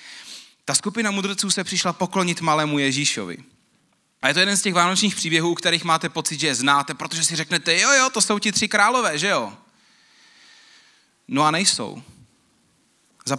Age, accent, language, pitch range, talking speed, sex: 30-49, native, Czech, 135-185 Hz, 175 wpm, male